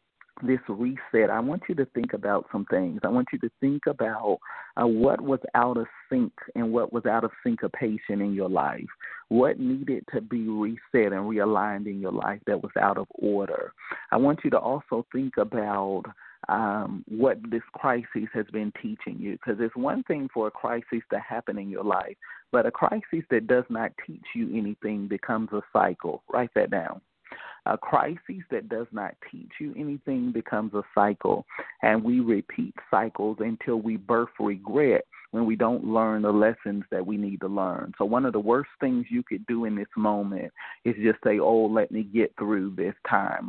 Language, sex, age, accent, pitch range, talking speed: English, male, 40-59, American, 105-120 Hz, 195 wpm